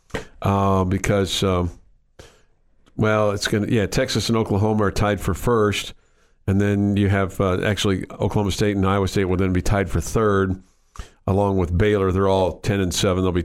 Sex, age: male, 50-69